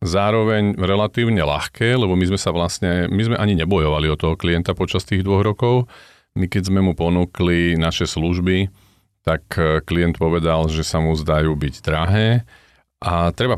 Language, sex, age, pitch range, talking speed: Slovak, male, 40-59, 80-95 Hz, 165 wpm